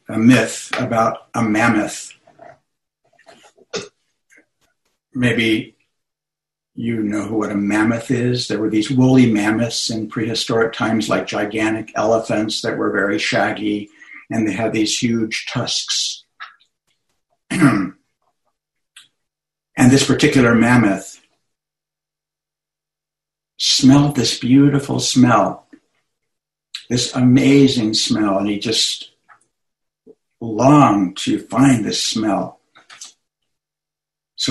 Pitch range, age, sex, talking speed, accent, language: 105-120 Hz, 60-79, male, 90 wpm, American, English